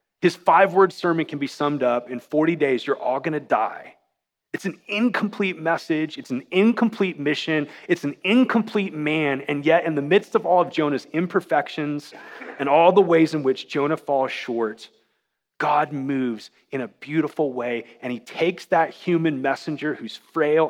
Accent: American